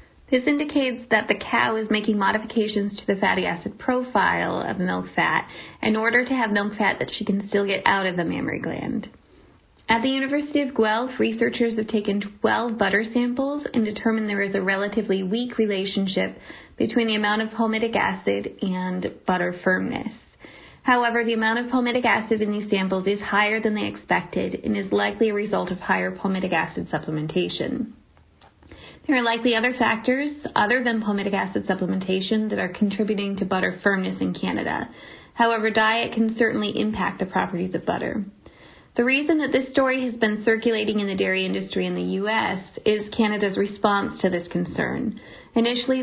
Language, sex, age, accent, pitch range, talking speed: English, female, 20-39, American, 195-235 Hz, 175 wpm